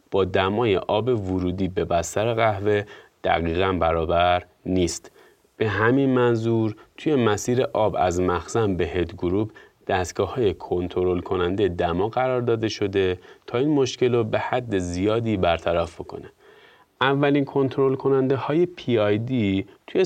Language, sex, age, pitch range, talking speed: Persian, male, 30-49, 95-125 Hz, 130 wpm